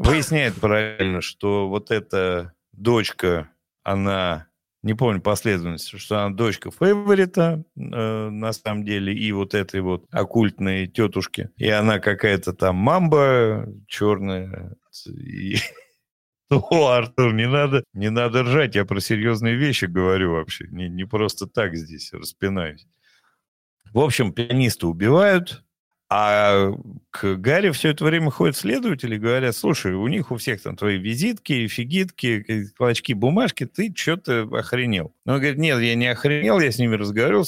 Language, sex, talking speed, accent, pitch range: Russian, male, 140 wpm, native, 95-125 Hz